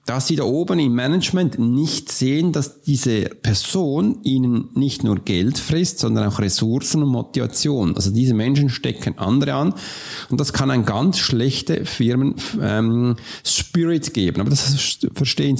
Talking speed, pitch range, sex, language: 150 wpm, 110-145 Hz, male, German